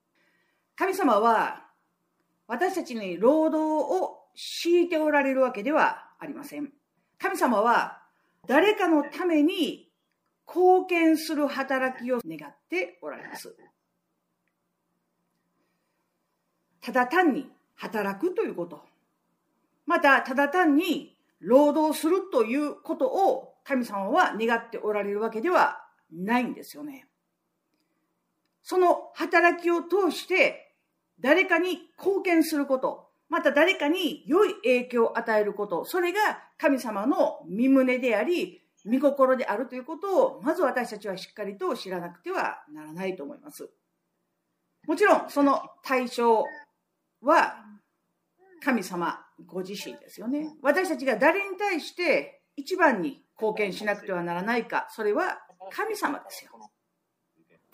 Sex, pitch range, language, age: female, 230-335 Hz, Japanese, 50-69